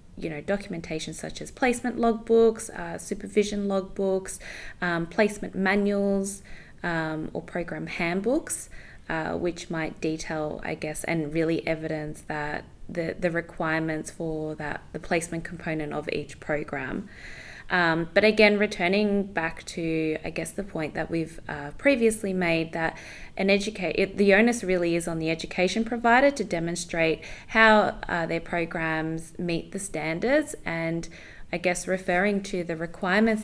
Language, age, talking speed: English, 20-39, 145 wpm